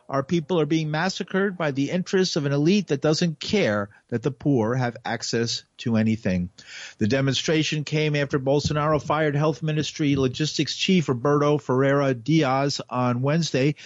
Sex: male